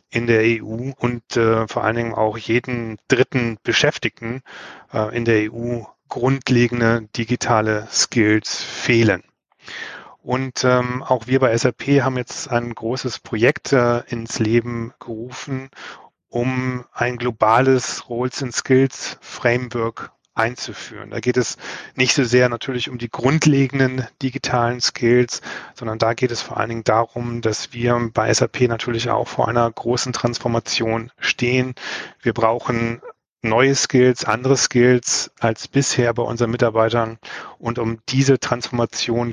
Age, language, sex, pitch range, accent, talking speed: 30-49, German, male, 115-125 Hz, German, 135 wpm